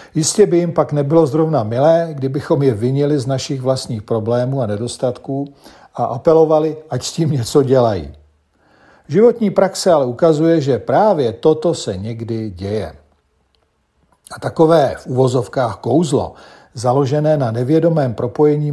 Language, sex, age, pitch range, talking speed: Czech, male, 50-69, 120-155 Hz, 135 wpm